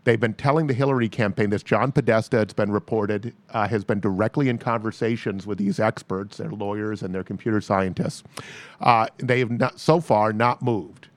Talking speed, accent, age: 190 wpm, American, 40-59